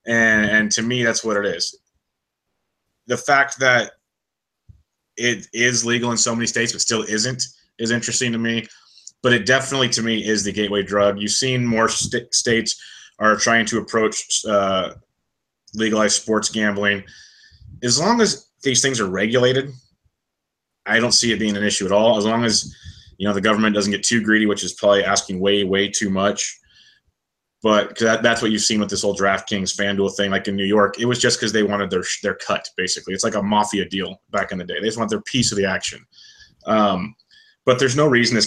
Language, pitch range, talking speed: English, 100-115 Hz, 205 wpm